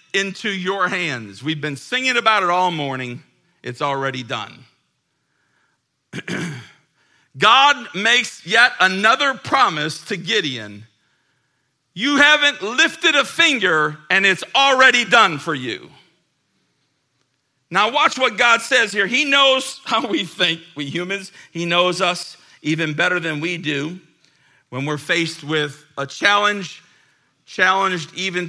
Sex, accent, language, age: male, American, English, 50-69